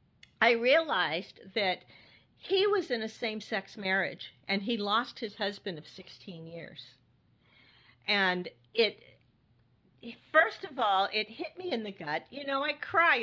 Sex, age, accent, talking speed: female, 50-69, American, 150 wpm